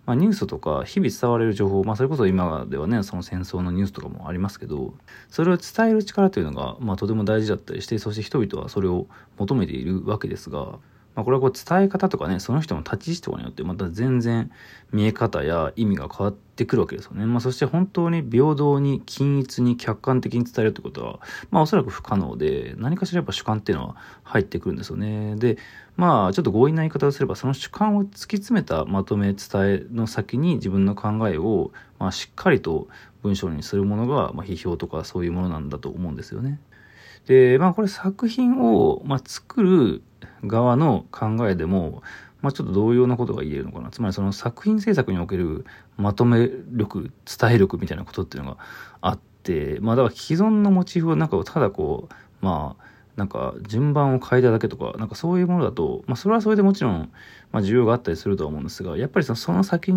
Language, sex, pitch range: Japanese, male, 100-155 Hz